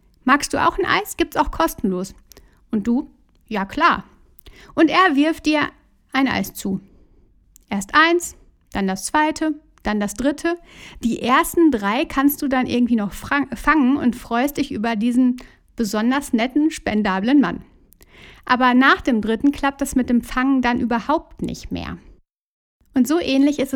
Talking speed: 155 wpm